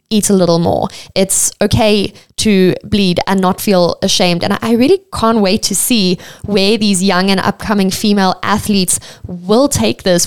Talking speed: 170 wpm